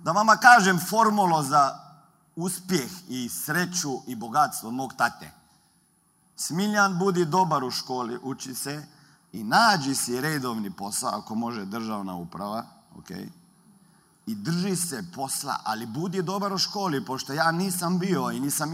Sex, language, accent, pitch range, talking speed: male, Croatian, native, 145-200 Hz, 140 wpm